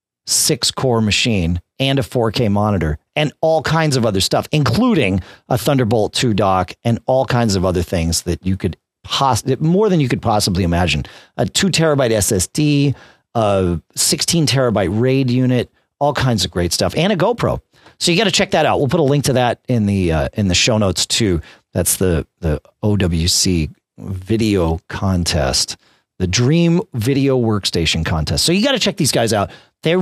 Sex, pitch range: male, 95-145 Hz